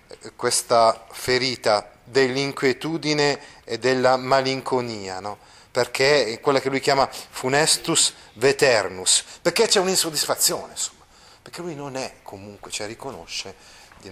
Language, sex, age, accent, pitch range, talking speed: Italian, male, 30-49, native, 105-140 Hz, 115 wpm